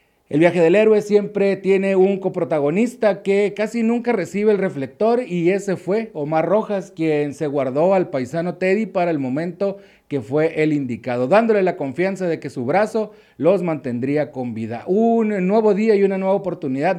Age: 40-59